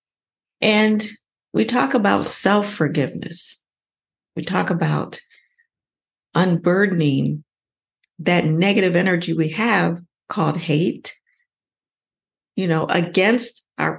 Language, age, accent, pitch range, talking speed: English, 50-69, American, 165-215 Hz, 85 wpm